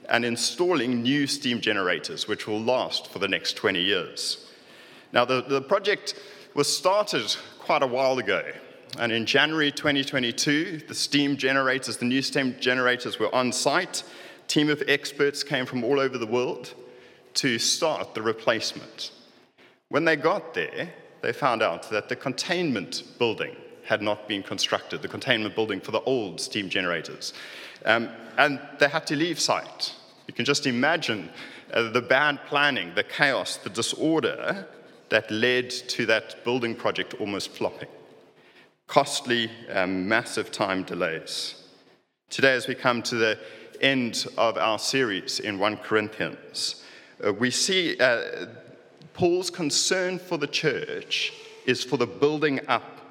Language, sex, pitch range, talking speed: English, male, 120-145 Hz, 150 wpm